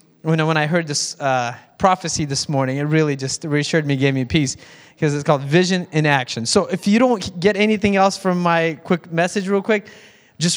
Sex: male